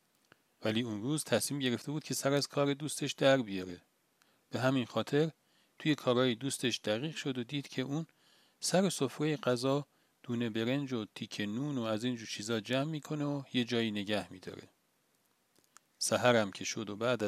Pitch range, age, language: 115-145 Hz, 40-59, Persian